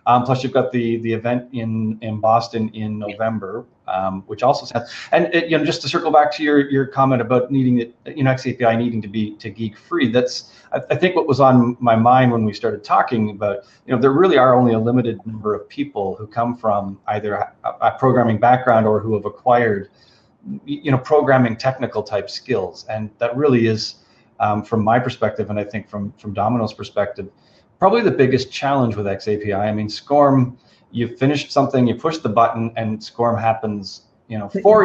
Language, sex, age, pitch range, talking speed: English, male, 30-49, 105-130 Hz, 205 wpm